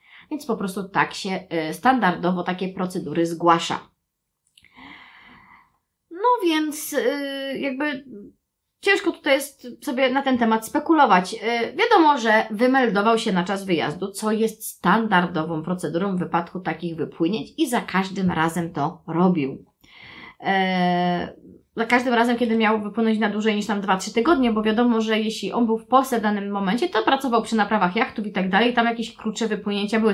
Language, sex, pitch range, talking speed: Polish, female, 180-240 Hz, 155 wpm